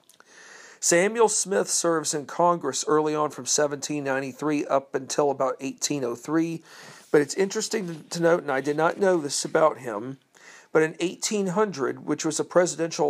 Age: 50-69